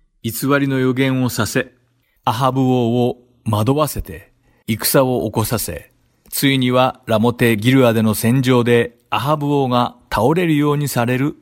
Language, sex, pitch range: Japanese, male, 110-130 Hz